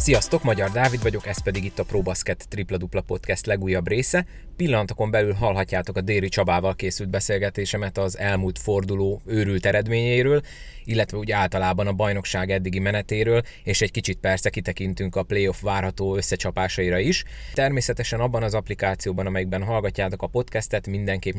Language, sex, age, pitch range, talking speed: Hungarian, male, 20-39, 95-115 Hz, 145 wpm